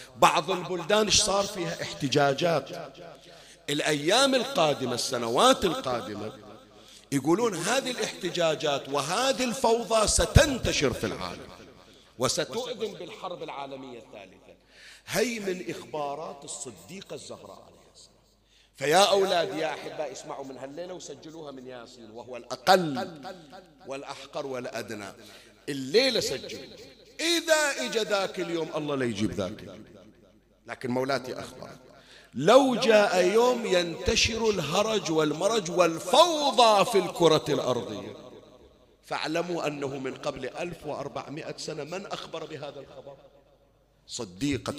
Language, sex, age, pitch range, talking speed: Arabic, male, 50-69, 135-195 Hz, 100 wpm